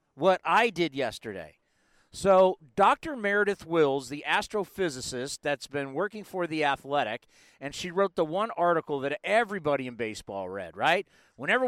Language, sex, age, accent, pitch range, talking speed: English, male, 40-59, American, 155-210 Hz, 150 wpm